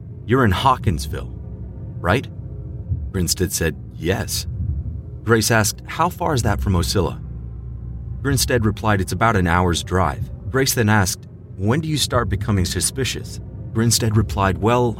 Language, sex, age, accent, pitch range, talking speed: English, male, 30-49, American, 90-110 Hz, 135 wpm